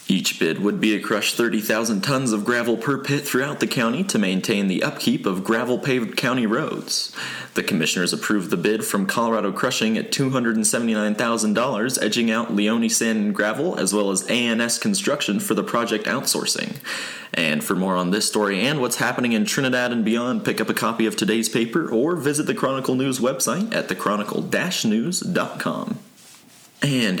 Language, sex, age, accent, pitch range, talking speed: English, male, 30-49, American, 105-130 Hz, 170 wpm